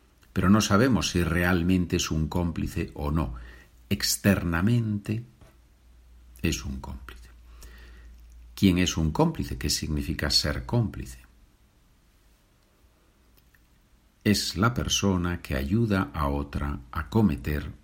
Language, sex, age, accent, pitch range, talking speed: Spanish, male, 60-79, Spanish, 65-100 Hz, 105 wpm